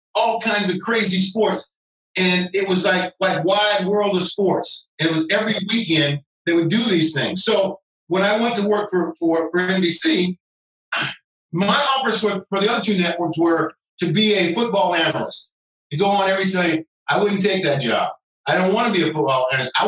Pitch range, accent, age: 170-215 Hz, American, 50-69